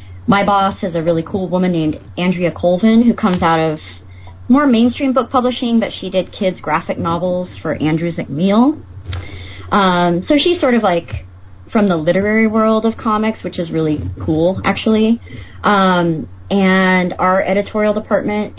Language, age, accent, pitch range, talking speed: English, 30-49, American, 145-205 Hz, 160 wpm